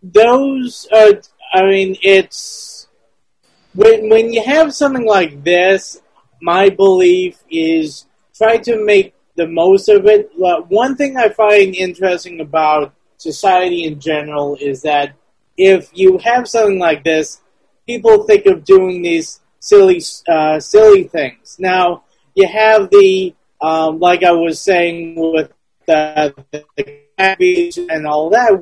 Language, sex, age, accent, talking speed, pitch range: English, male, 30-49, American, 135 wpm, 170-260 Hz